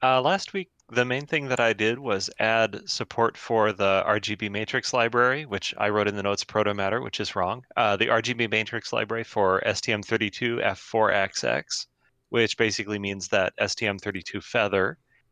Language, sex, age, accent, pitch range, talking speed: English, male, 30-49, American, 100-115 Hz, 155 wpm